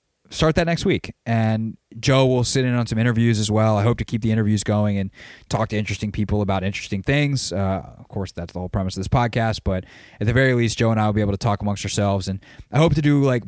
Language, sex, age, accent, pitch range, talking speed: English, male, 20-39, American, 100-120 Hz, 265 wpm